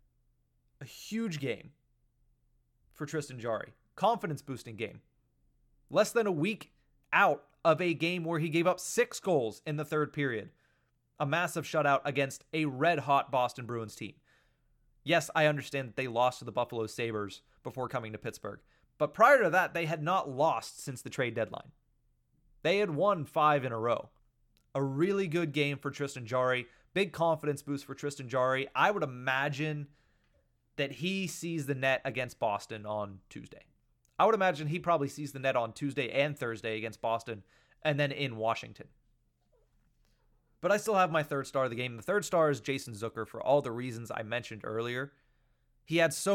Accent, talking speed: American, 175 wpm